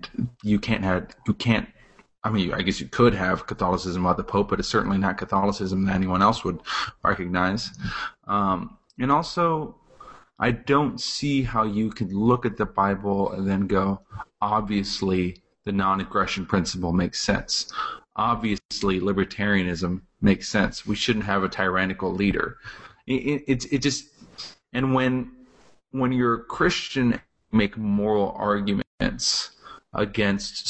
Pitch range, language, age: 95-120 Hz, English, 30-49